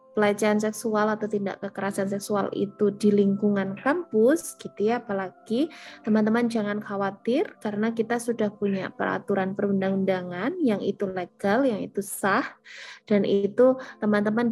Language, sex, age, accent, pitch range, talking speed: Indonesian, female, 20-39, native, 195-220 Hz, 130 wpm